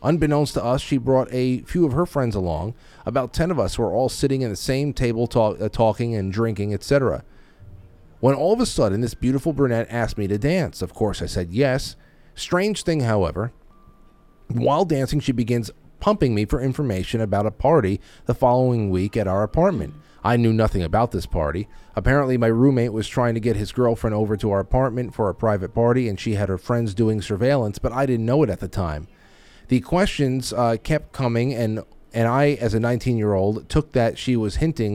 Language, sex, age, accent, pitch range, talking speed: English, male, 30-49, American, 105-135 Hz, 205 wpm